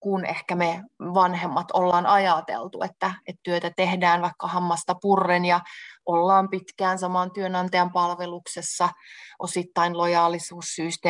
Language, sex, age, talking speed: Finnish, female, 30-49, 115 wpm